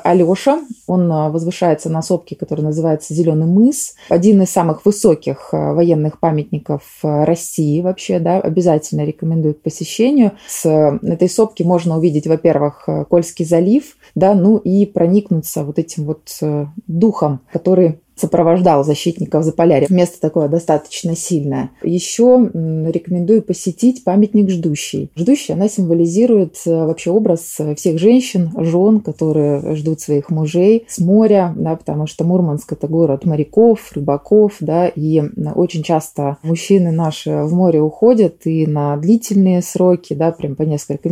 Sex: female